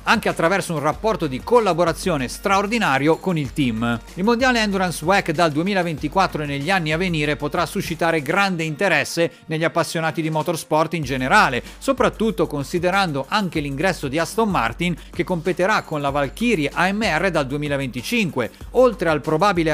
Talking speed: 150 wpm